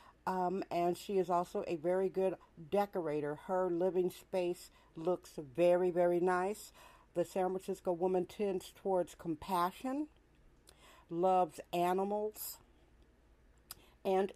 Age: 50-69